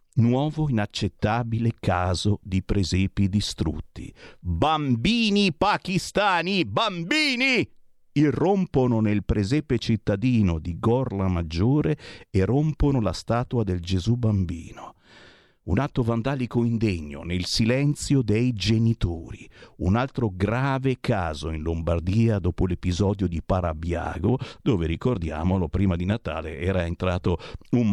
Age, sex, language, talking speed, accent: 50-69, male, Italian, 105 wpm, native